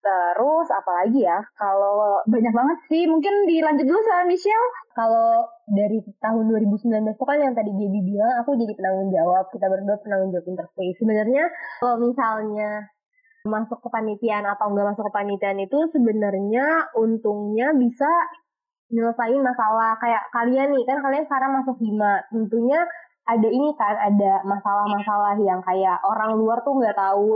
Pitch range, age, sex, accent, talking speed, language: 210-270 Hz, 20-39, female, native, 145 wpm, Indonesian